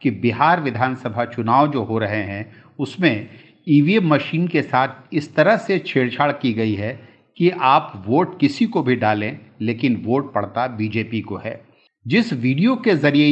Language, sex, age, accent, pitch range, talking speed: Hindi, male, 50-69, native, 115-145 Hz, 165 wpm